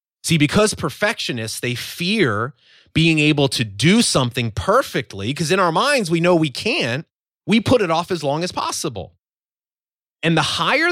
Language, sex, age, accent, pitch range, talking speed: English, male, 30-49, American, 105-155 Hz, 165 wpm